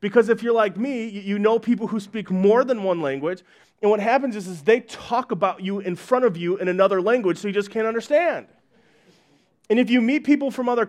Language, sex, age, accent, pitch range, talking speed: English, male, 30-49, American, 170-215 Hz, 230 wpm